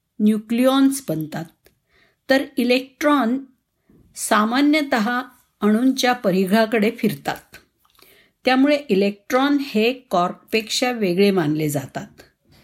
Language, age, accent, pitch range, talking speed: Marathi, 50-69, native, 195-260 Hz, 70 wpm